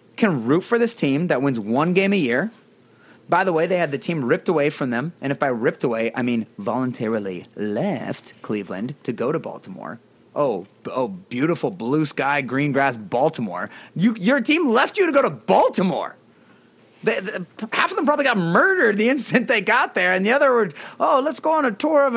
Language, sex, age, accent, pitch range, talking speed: English, male, 30-49, American, 145-240 Hz, 205 wpm